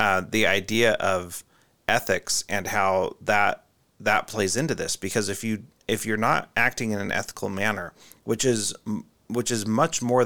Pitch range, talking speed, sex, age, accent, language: 100-120 Hz, 170 wpm, male, 30-49, American, English